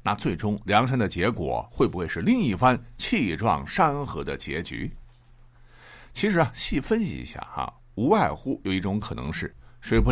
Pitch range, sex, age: 105-155 Hz, male, 50-69